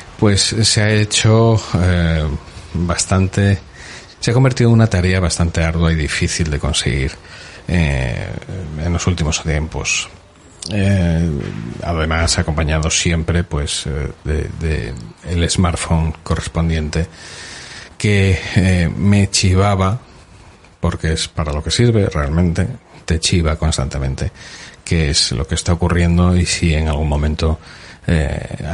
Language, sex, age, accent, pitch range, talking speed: Spanish, male, 30-49, Spanish, 80-95 Hz, 125 wpm